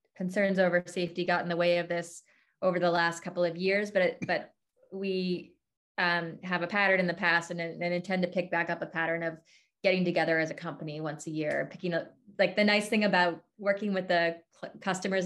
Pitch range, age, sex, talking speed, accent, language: 175-195 Hz, 20-39, female, 220 wpm, American, English